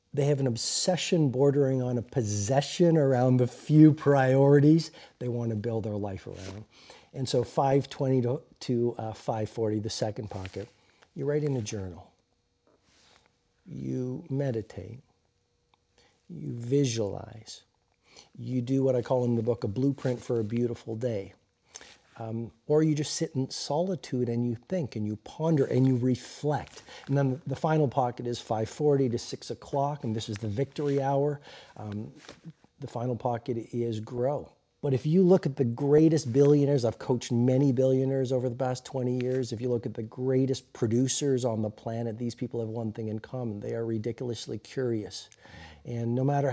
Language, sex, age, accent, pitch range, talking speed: English, male, 50-69, American, 115-140 Hz, 170 wpm